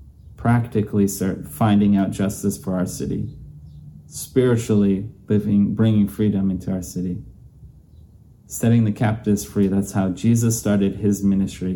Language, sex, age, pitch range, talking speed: English, male, 30-49, 95-110 Hz, 130 wpm